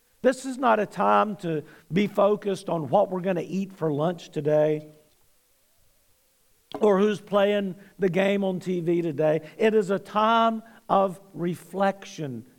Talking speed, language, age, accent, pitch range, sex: 150 wpm, English, 50-69, American, 180-225 Hz, male